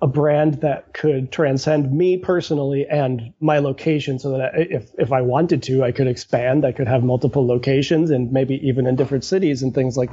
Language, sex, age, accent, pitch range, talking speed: English, male, 30-49, American, 130-155 Hz, 205 wpm